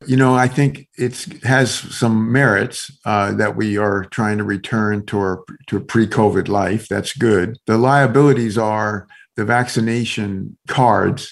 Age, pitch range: 50-69, 100-125 Hz